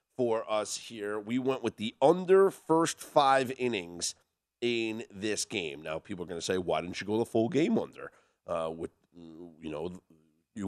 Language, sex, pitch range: English, male, 105-175 Hz